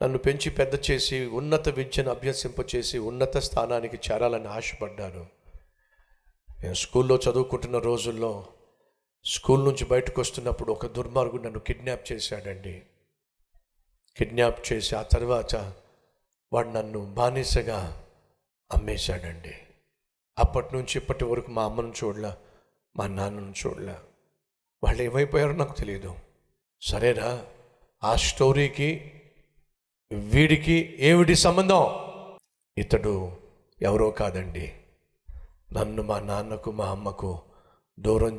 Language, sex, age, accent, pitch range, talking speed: Telugu, male, 50-69, native, 105-155 Hz, 95 wpm